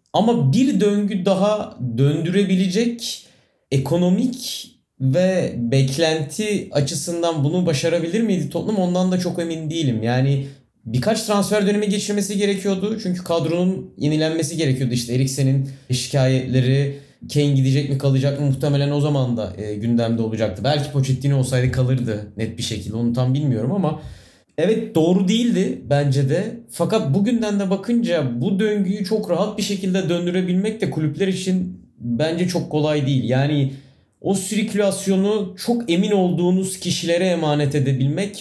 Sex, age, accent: male, 30-49, native